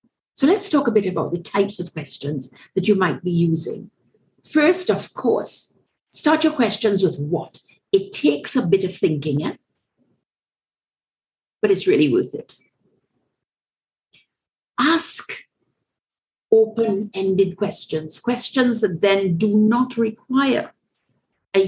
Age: 50-69